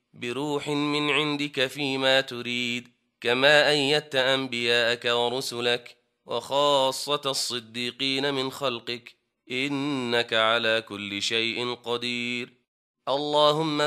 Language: Arabic